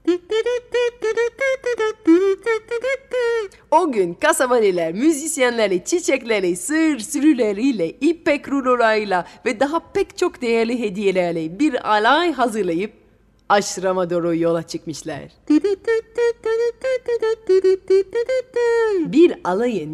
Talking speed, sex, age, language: 70 wpm, female, 30-49, Turkish